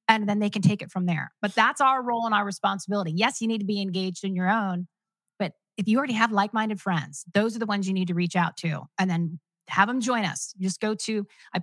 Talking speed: 265 wpm